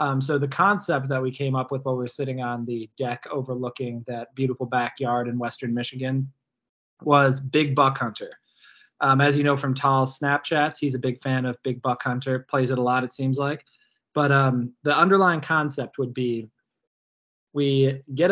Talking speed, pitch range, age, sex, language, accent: 190 wpm, 125-145 Hz, 20-39, male, English, American